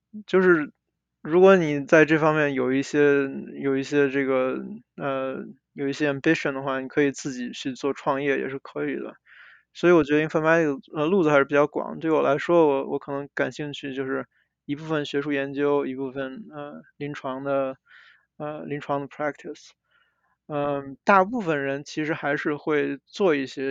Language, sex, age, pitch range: Chinese, male, 20-39, 135-155 Hz